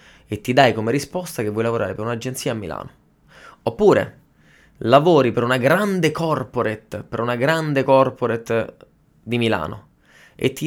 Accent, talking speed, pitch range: native, 145 wpm, 110-145 Hz